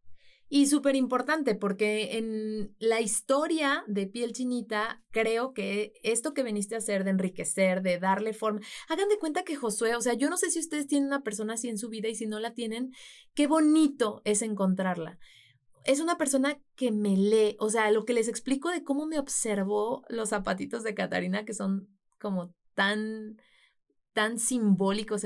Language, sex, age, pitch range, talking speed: Spanish, female, 30-49, 210-270 Hz, 180 wpm